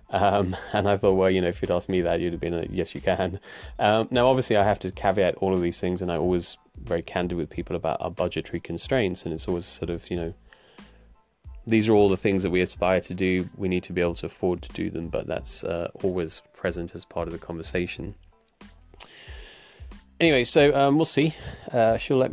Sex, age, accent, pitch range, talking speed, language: male, 30-49, British, 90-105 Hz, 230 wpm, English